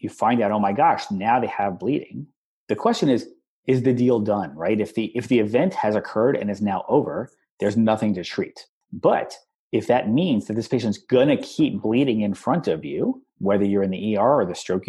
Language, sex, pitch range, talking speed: English, male, 105-140 Hz, 220 wpm